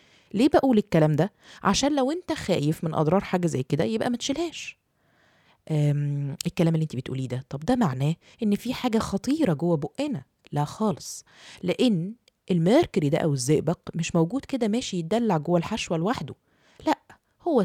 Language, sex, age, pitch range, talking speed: Arabic, female, 20-39, 155-230 Hz, 160 wpm